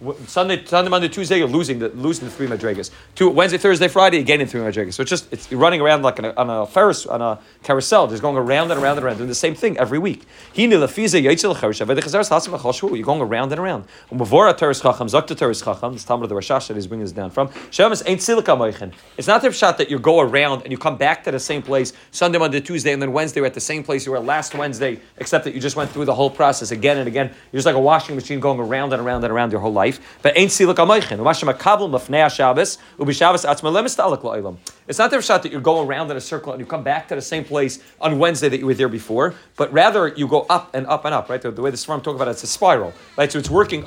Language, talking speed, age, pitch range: English, 210 wpm, 40-59, 130-165 Hz